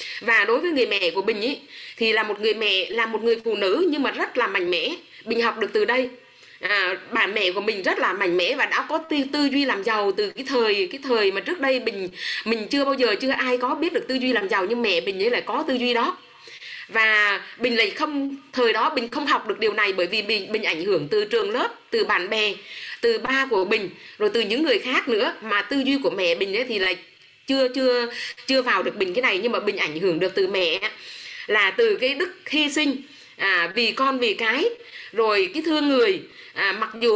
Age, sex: 20-39, female